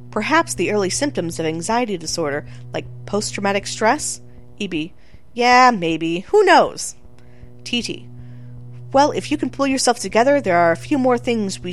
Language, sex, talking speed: English, female, 155 wpm